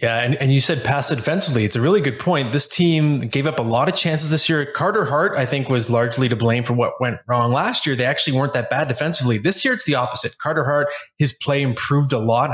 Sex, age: male, 20-39